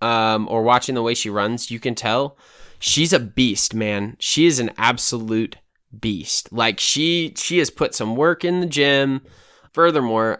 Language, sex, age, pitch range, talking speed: English, male, 10-29, 110-130 Hz, 175 wpm